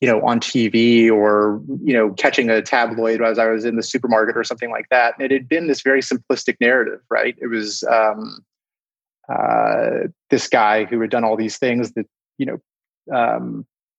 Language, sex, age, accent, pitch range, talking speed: English, male, 30-49, American, 115-135 Hz, 195 wpm